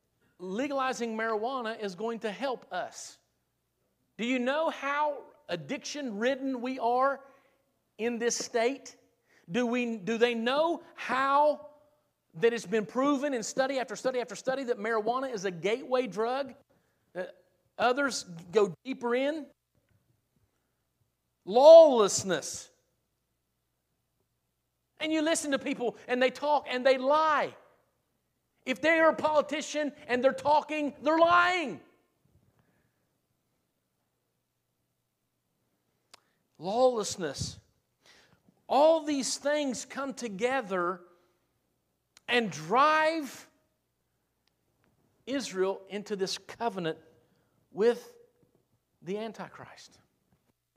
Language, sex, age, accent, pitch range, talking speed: English, male, 50-69, American, 220-280 Hz, 95 wpm